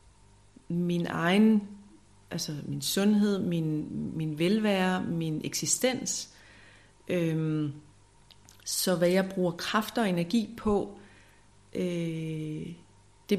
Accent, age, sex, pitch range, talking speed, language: native, 30-49, female, 130-195 Hz, 85 wpm, Danish